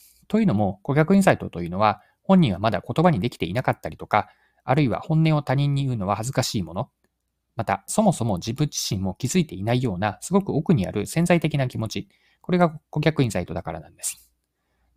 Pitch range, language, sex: 95-150 Hz, Japanese, male